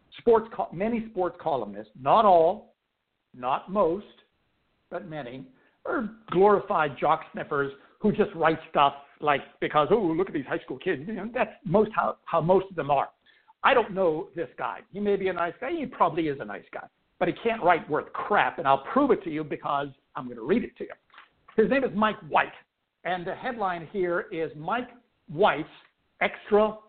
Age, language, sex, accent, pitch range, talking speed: 60-79, English, male, American, 165-230 Hz, 195 wpm